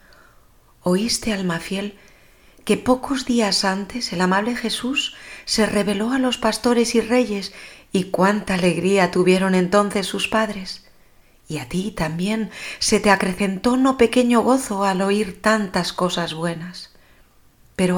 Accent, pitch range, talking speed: Spanish, 175-225 Hz, 135 wpm